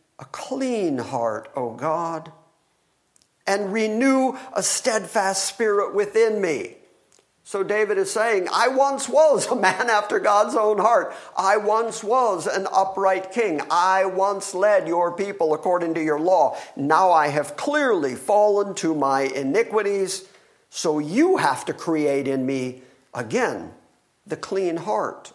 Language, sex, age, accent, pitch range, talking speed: English, male, 50-69, American, 150-220 Hz, 140 wpm